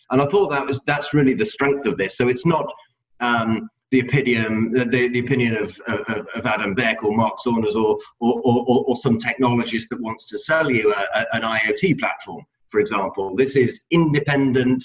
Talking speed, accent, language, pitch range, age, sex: 185 wpm, British, English, 110-130 Hz, 30-49, male